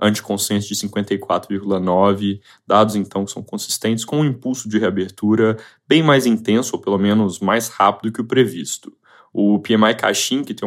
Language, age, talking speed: Portuguese, 10-29, 165 wpm